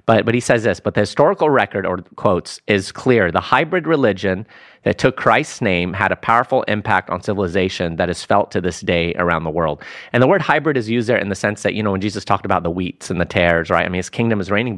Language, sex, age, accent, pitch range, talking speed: English, male, 30-49, American, 95-120 Hz, 260 wpm